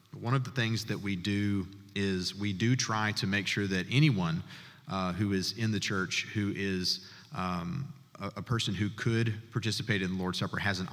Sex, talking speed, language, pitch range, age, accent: male, 205 wpm, English, 95-115 Hz, 30-49, American